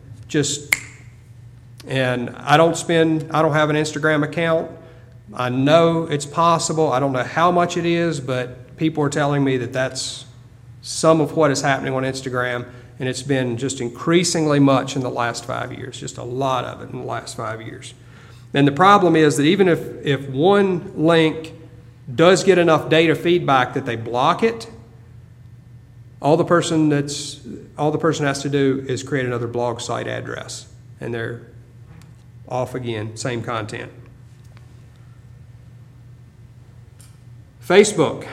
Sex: male